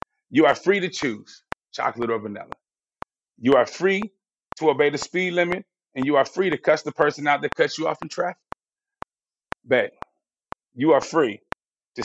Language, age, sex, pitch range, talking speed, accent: English, 30-49, male, 135-190 Hz, 180 wpm, American